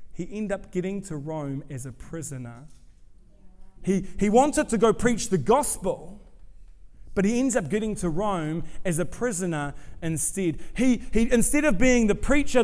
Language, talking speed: English, 165 wpm